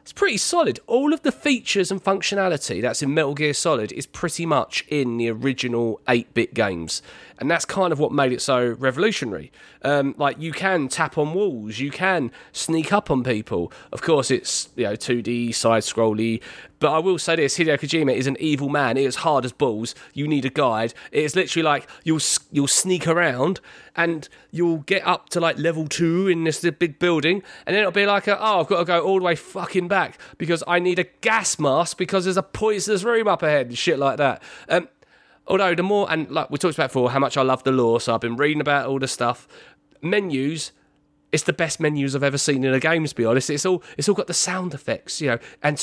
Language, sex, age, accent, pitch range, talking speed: English, male, 30-49, British, 135-185 Hz, 225 wpm